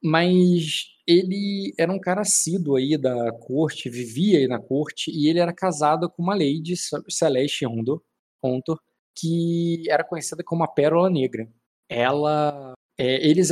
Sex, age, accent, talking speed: male, 20-39, Brazilian, 135 wpm